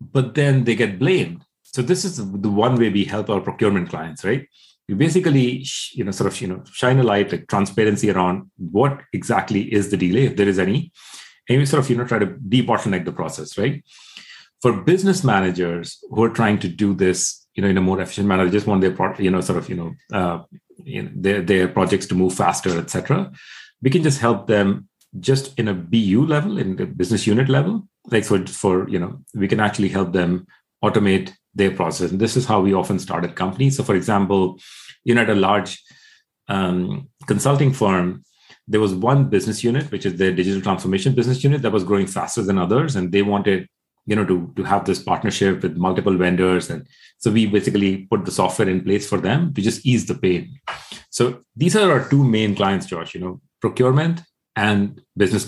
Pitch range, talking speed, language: 95-125 Hz, 215 wpm, English